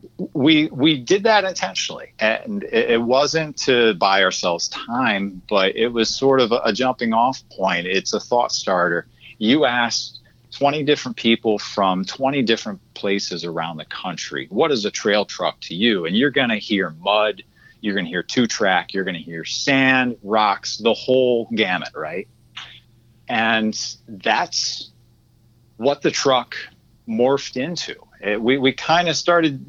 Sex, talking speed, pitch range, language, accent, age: male, 160 wpm, 110-135 Hz, English, American, 40-59